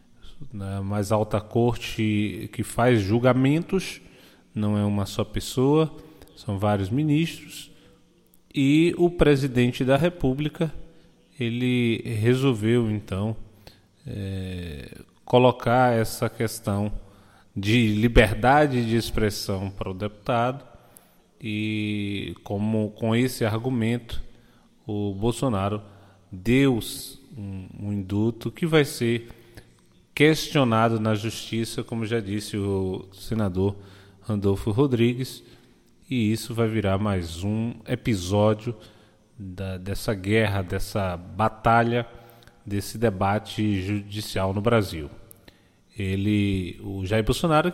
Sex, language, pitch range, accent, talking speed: male, Portuguese, 100-120 Hz, Brazilian, 95 wpm